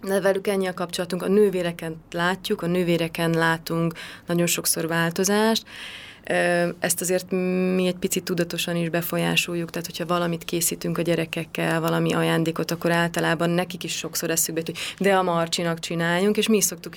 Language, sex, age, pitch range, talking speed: Hungarian, female, 20-39, 165-175 Hz, 160 wpm